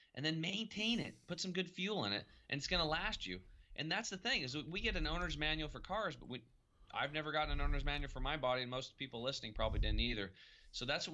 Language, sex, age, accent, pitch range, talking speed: English, male, 30-49, American, 115-155 Hz, 265 wpm